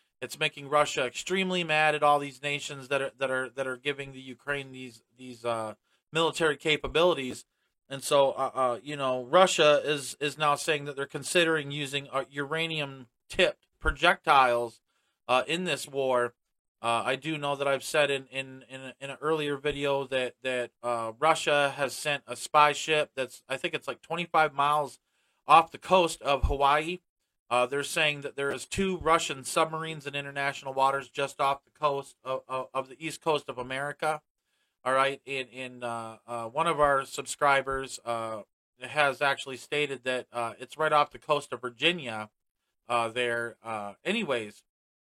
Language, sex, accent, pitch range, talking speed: English, male, American, 125-155 Hz, 175 wpm